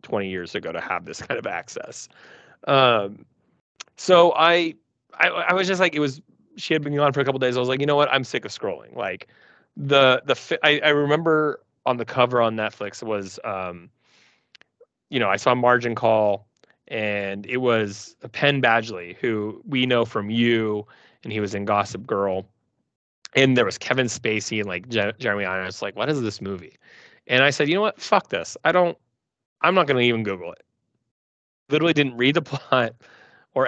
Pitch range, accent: 105-140 Hz, American